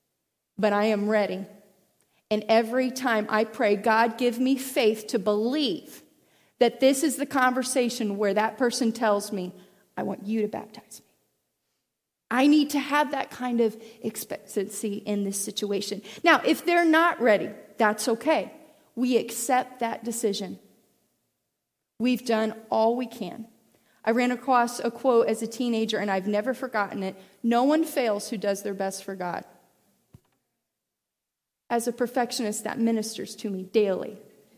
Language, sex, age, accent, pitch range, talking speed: English, female, 30-49, American, 220-265 Hz, 155 wpm